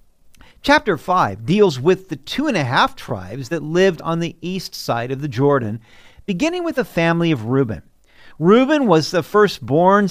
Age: 50-69